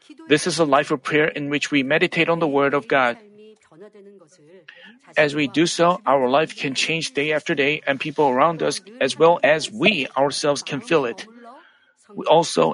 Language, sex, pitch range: Korean, male, 145-205 Hz